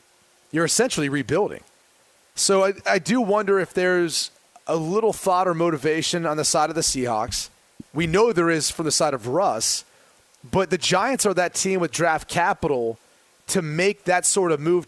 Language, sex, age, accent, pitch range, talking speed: English, male, 30-49, American, 155-195 Hz, 180 wpm